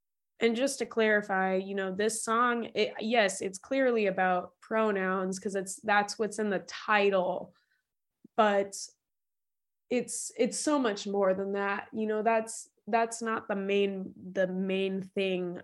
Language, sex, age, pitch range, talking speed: English, female, 20-39, 185-220 Hz, 145 wpm